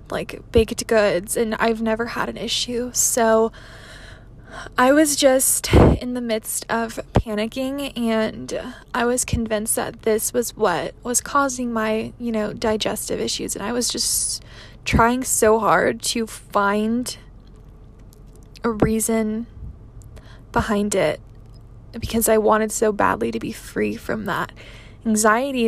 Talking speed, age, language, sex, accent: 135 wpm, 20-39, English, female, American